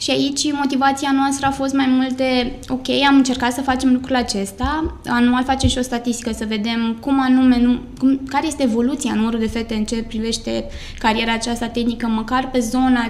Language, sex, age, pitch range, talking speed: Romanian, female, 20-39, 230-270 Hz, 185 wpm